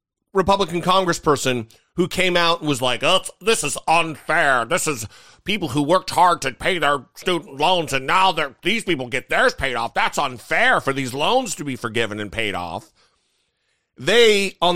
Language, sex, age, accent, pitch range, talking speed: English, male, 40-59, American, 130-205 Hz, 180 wpm